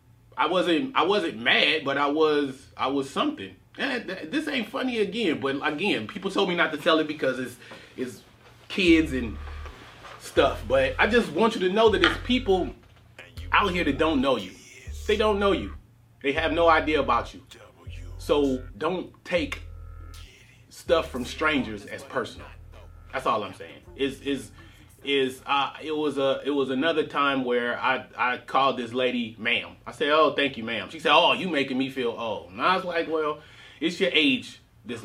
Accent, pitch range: American, 120-165 Hz